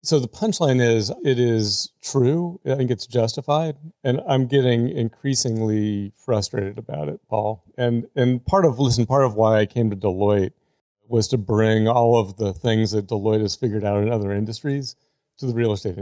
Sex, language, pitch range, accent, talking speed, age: male, English, 105-130 Hz, American, 185 wpm, 40-59